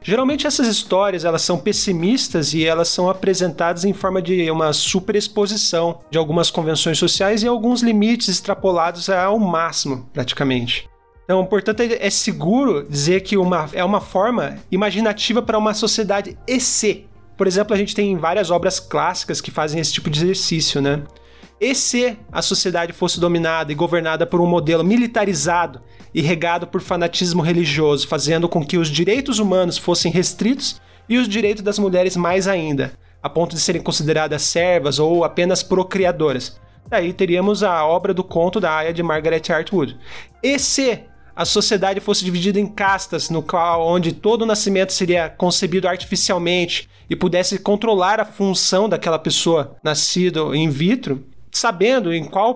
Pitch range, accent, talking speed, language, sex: 165-205 Hz, Brazilian, 155 wpm, Portuguese, male